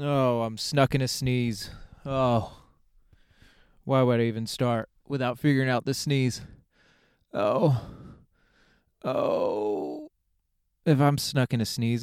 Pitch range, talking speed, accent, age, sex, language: 110-140 Hz, 125 wpm, American, 20-39, male, English